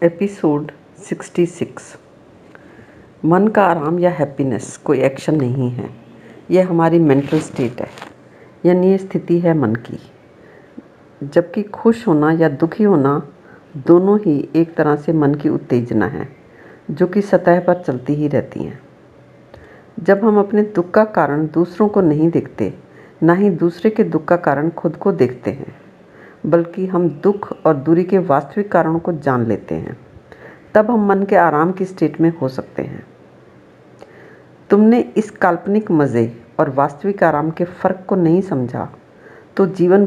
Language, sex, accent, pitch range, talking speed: Hindi, female, native, 150-185 Hz, 155 wpm